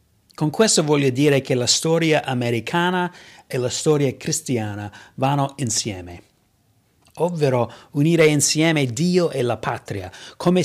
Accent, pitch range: native, 125-160 Hz